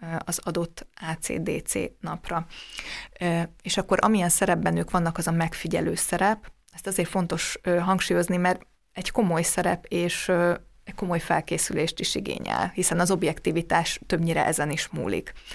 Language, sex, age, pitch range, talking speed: Hungarian, female, 20-39, 170-195 Hz, 135 wpm